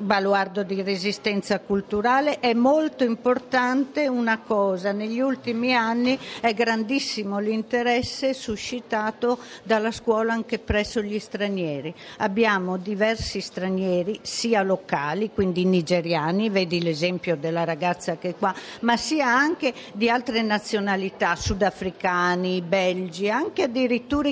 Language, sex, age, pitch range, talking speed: Italian, female, 50-69, 190-235 Hz, 115 wpm